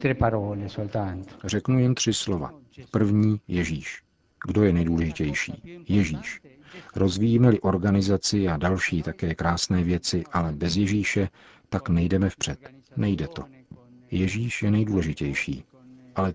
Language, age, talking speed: Czech, 50-69, 105 wpm